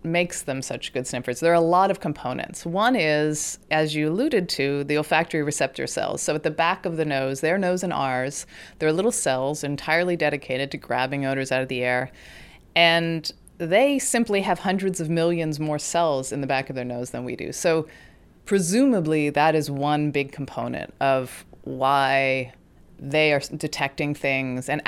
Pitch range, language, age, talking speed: 135-165 Hz, English, 30-49, 185 wpm